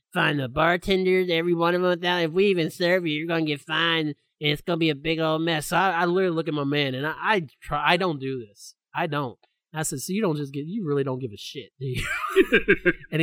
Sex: male